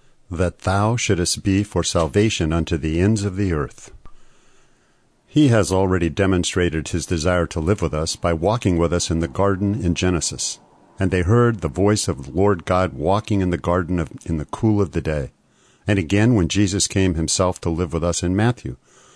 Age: 50-69